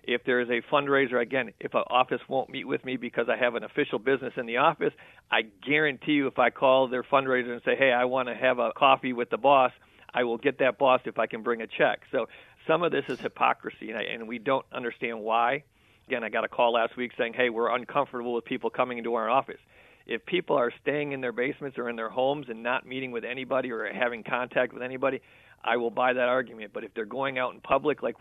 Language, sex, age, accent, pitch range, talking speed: English, male, 50-69, American, 120-135 Hz, 245 wpm